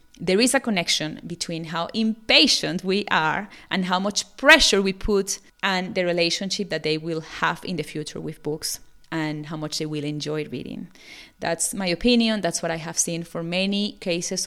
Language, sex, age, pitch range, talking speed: English, female, 30-49, 160-210 Hz, 185 wpm